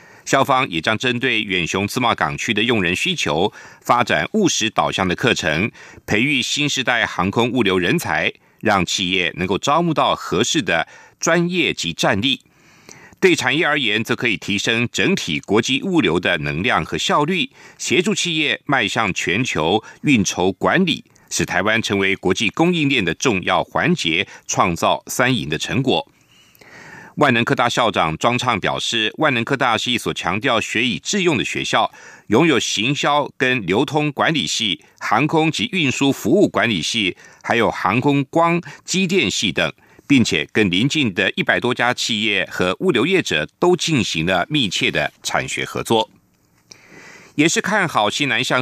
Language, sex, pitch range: French, male, 100-155 Hz